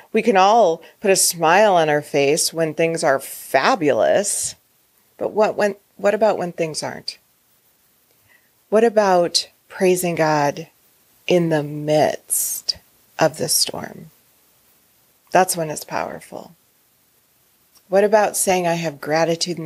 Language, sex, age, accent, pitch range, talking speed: English, female, 40-59, American, 155-190 Hz, 130 wpm